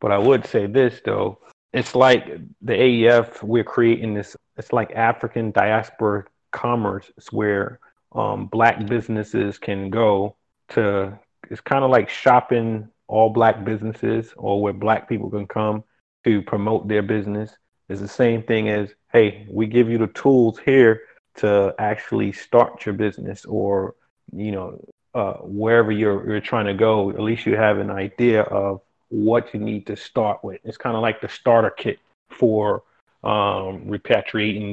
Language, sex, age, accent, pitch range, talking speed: English, male, 30-49, American, 100-115 Hz, 160 wpm